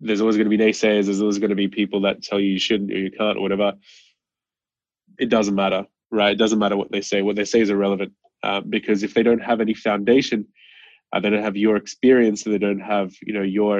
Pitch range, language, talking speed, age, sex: 100-115 Hz, English, 250 wpm, 20-39, male